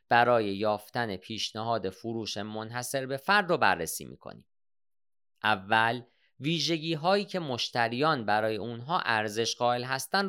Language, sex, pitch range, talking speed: Persian, male, 105-130 Hz, 115 wpm